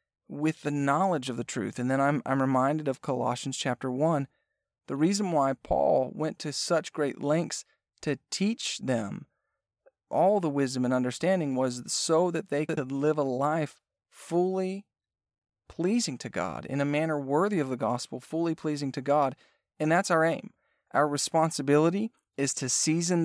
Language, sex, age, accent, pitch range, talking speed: English, male, 40-59, American, 135-160 Hz, 165 wpm